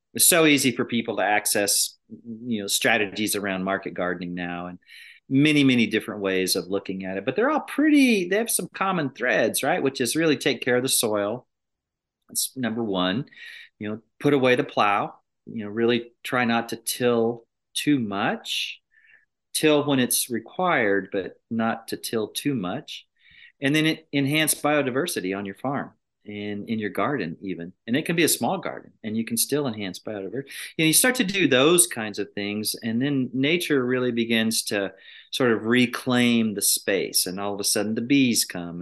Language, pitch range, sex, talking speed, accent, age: English, 105-135 Hz, male, 190 wpm, American, 40-59